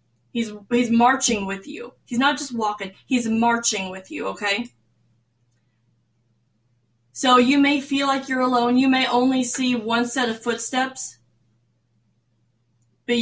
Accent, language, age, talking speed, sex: American, English, 10-29, 135 wpm, female